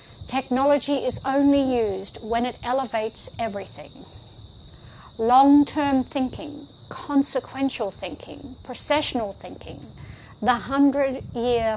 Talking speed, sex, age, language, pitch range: 80 wpm, female, 50-69, English, 215-275 Hz